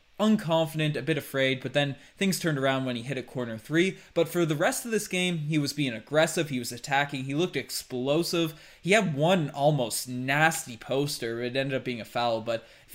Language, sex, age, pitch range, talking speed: English, male, 20-39, 130-165 Hz, 215 wpm